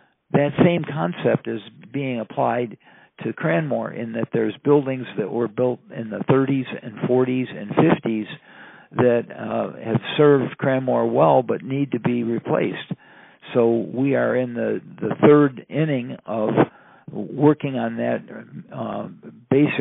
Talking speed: 140 wpm